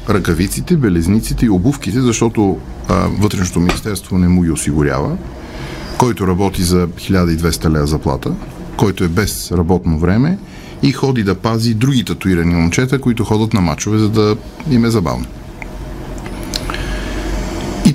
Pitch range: 90-130 Hz